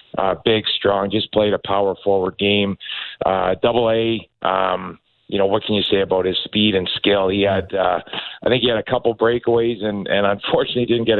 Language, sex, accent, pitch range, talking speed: English, male, American, 100-115 Hz, 210 wpm